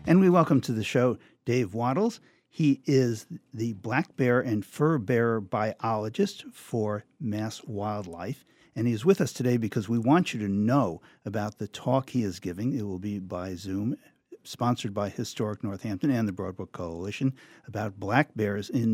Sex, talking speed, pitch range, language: male, 175 wpm, 100-130 Hz, English